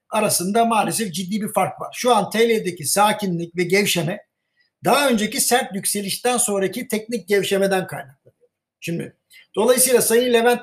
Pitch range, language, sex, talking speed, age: 190-235 Hz, Turkish, male, 135 wpm, 60-79